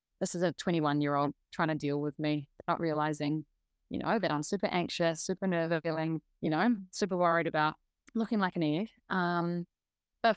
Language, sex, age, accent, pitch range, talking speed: English, female, 20-39, Australian, 160-190 Hz, 180 wpm